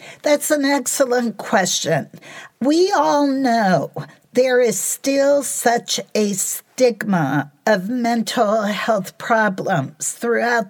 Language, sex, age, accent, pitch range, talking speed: English, female, 50-69, American, 210-275 Hz, 100 wpm